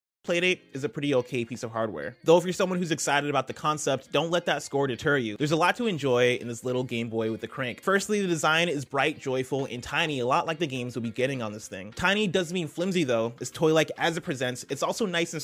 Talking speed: 270 wpm